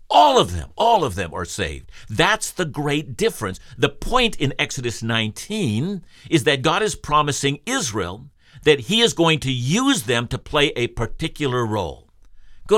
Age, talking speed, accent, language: 60-79, 170 wpm, American, English